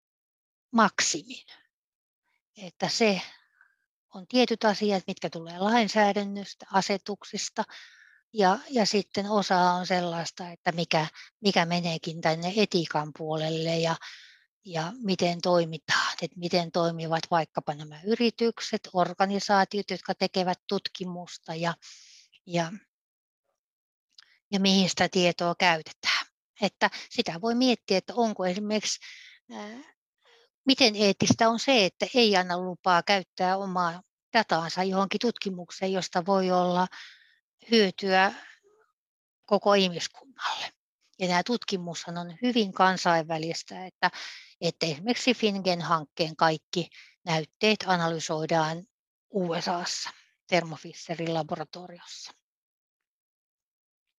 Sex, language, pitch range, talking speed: female, English, 175-215 Hz, 95 wpm